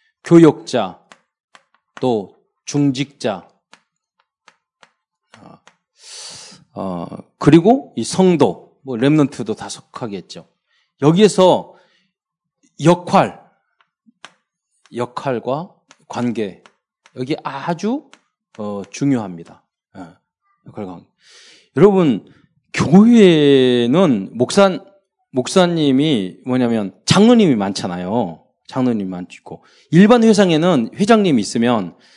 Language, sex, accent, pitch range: Korean, male, native, 120-185 Hz